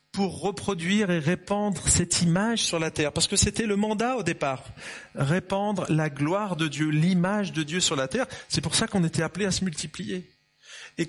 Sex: male